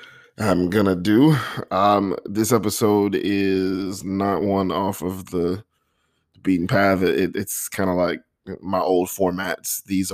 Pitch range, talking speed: 90-105 Hz, 135 wpm